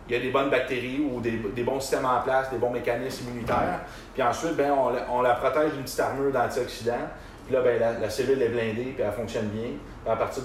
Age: 30-49